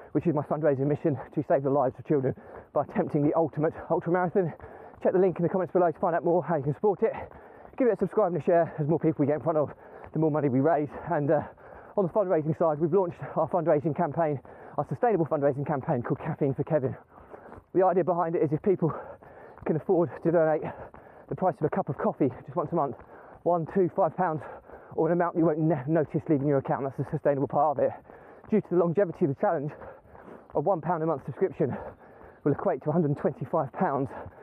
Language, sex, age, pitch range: English, male, 20-39, 145-175 Hz